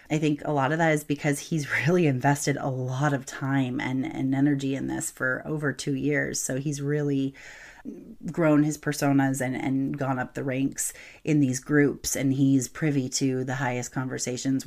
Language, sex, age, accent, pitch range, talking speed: English, female, 30-49, American, 135-170 Hz, 190 wpm